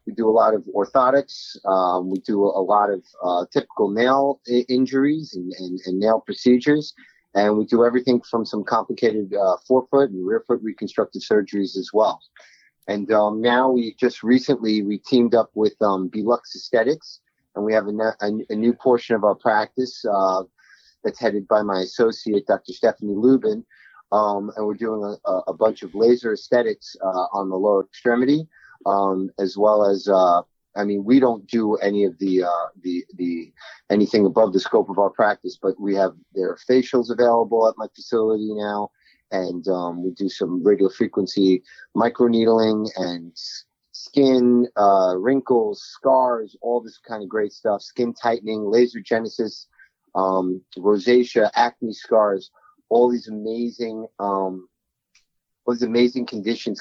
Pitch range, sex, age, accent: 95-120 Hz, male, 30-49, American